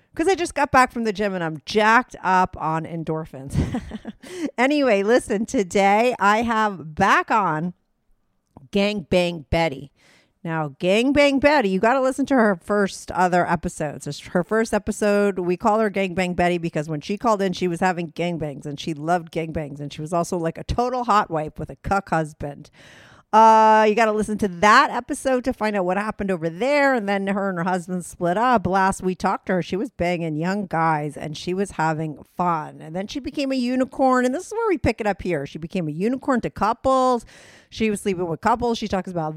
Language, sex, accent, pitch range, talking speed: English, female, American, 165-230 Hz, 215 wpm